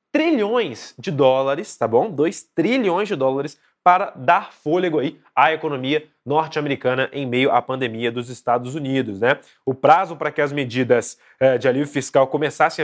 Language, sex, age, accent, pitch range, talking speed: Portuguese, male, 20-39, Brazilian, 125-155 Hz, 160 wpm